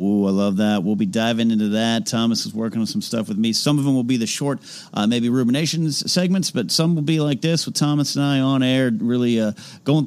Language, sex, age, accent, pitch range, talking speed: English, male, 40-59, American, 125-195 Hz, 255 wpm